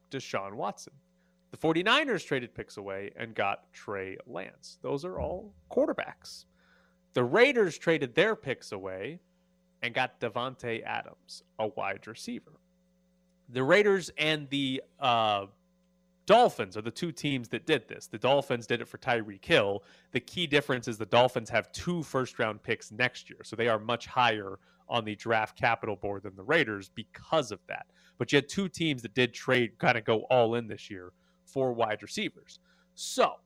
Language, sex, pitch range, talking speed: English, male, 115-175 Hz, 170 wpm